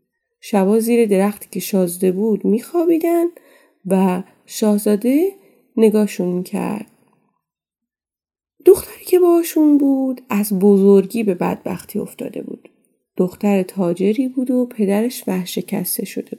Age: 30-49